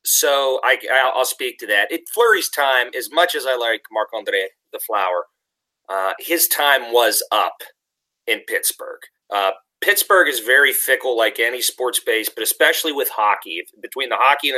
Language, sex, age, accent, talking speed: English, male, 30-49, American, 175 wpm